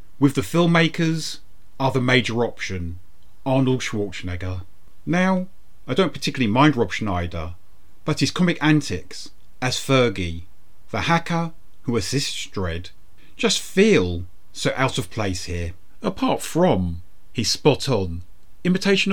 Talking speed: 125 wpm